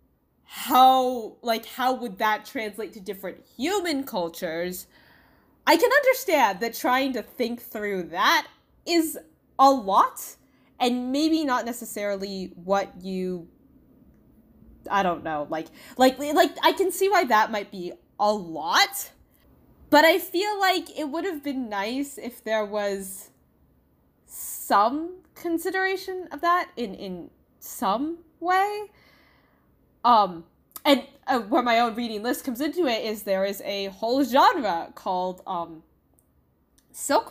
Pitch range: 200-290 Hz